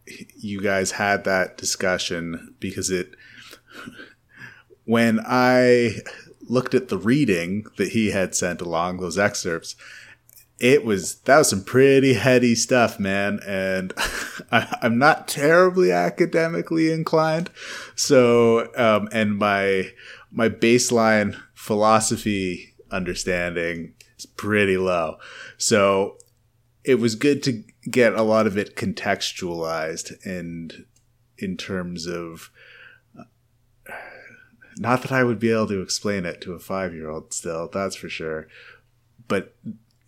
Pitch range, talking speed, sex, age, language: 95-120 Hz, 120 wpm, male, 30-49, English